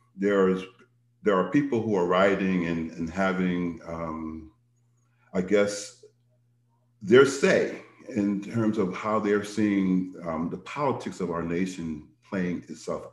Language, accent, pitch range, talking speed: English, American, 85-115 Hz, 135 wpm